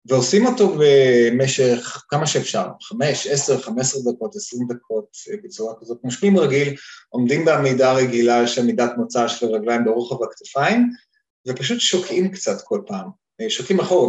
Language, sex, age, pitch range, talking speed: Hebrew, male, 20-39, 130-200 Hz, 140 wpm